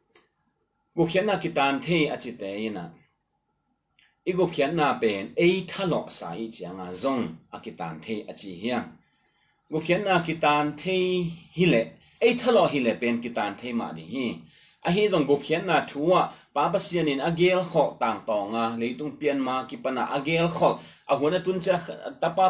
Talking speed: 35 wpm